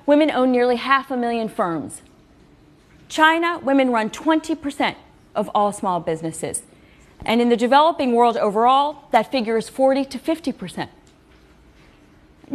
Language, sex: English, female